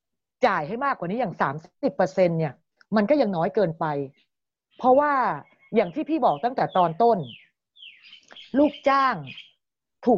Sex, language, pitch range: female, Thai, 165-235 Hz